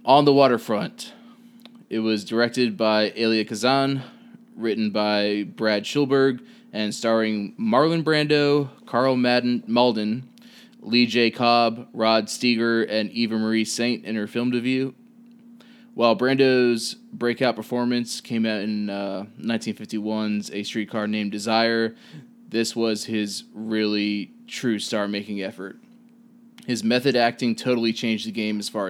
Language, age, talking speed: English, 20-39, 130 wpm